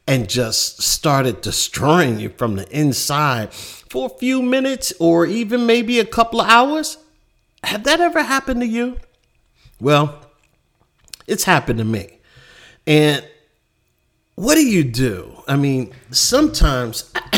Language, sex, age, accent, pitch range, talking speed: English, male, 50-69, American, 115-155 Hz, 130 wpm